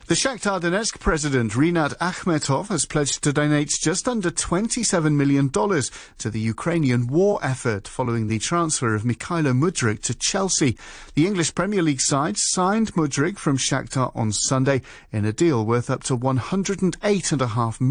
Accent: British